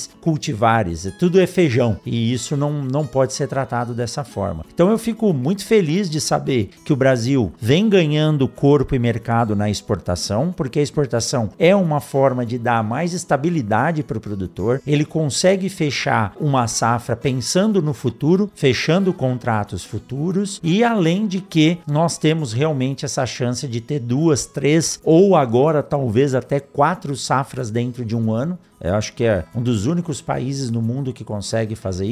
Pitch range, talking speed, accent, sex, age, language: 120-165 Hz, 170 wpm, Brazilian, male, 50-69, Portuguese